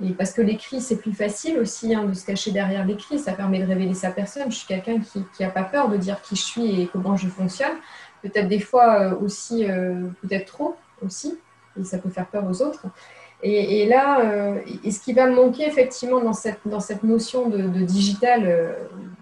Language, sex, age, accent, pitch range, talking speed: French, female, 20-39, French, 190-230 Hz, 225 wpm